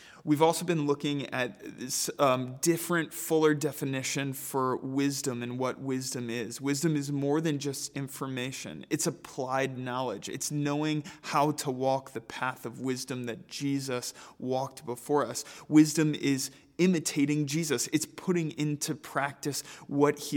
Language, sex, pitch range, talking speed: English, male, 130-155 Hz, 145 wpm